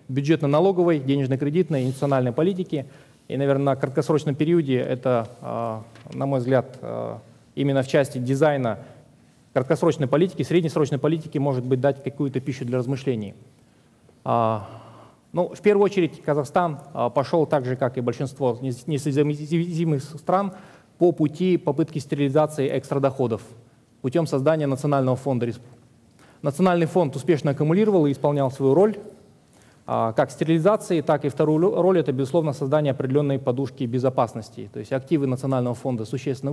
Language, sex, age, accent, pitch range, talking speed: Russian, male, 20-39, native, 130-155 Hz, 125 wpm